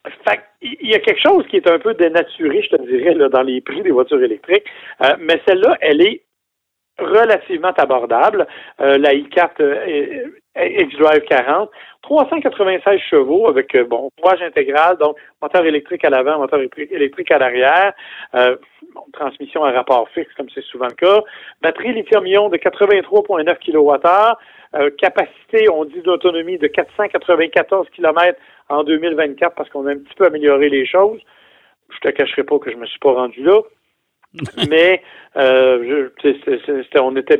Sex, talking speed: male, 165 wpm